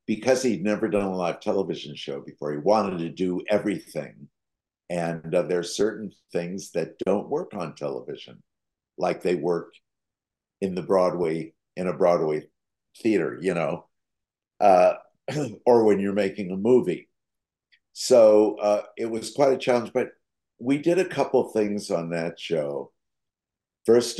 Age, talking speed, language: 60-79, 150 wpm, English